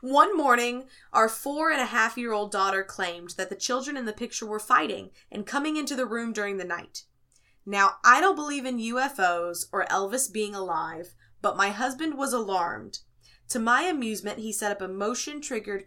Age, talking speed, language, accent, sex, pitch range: 20-39, 170 wpm, English, American, female, 180-245 Hz